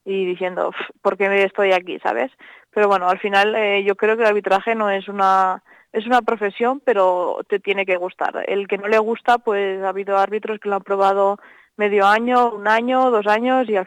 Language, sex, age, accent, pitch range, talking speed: Spanish, female, 20-39, Spanish, 195-215 Hz, 210 wpm